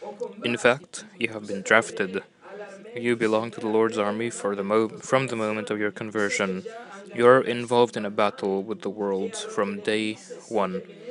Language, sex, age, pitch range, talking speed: French, male, 20-39, 110-175 Hz, 160 wpm